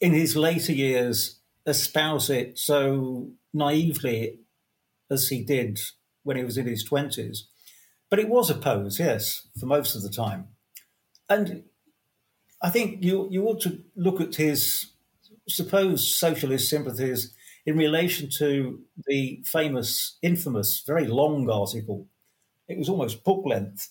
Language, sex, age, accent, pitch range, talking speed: English, male, 50-69, British, 120-155 Hz, 140 wpm